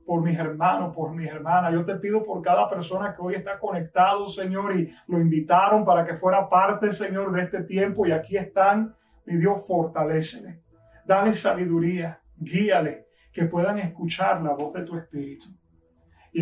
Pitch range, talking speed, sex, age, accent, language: 155-195 Hz, 170 wpm, male, 30-49, American, English